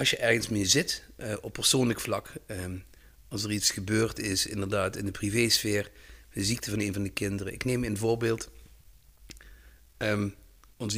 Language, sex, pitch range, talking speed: Dutch, male, 100-120 Hz, 160 wpm